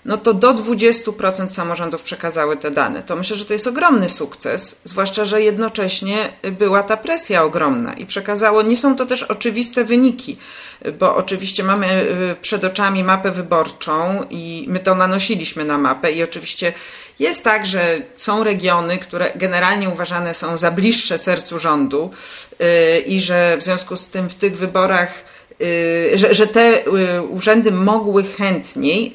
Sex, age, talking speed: female, 40-59, 150 wpm